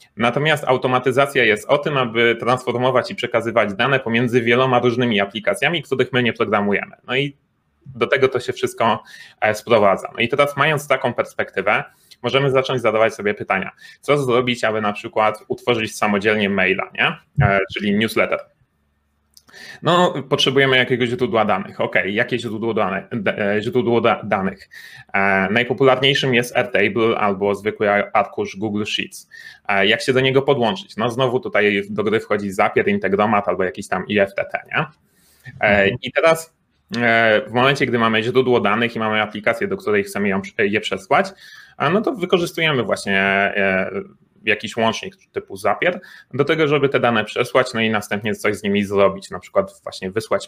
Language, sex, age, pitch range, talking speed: Polish, male, 30-49, 110-135 Hz, 145 wpm